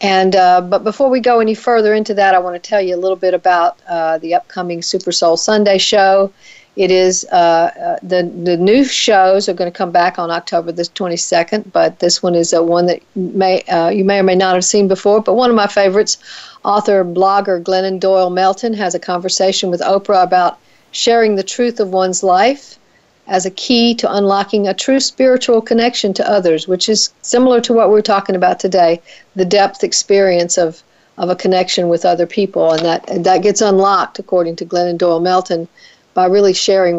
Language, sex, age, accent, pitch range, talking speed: English, female, 50-69, American, 180-215 Hz, 200 wpm